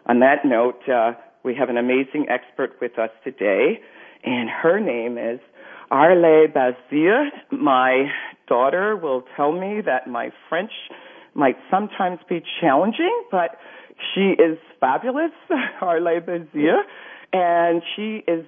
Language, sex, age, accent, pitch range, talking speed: English, female, 50-69, American, 130-210 Hz, 125 wpm